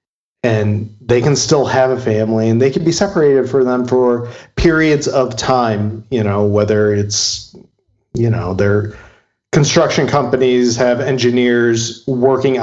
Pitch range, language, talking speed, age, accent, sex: 110-135 Hz, English, 145 wpm, 40-59, American, male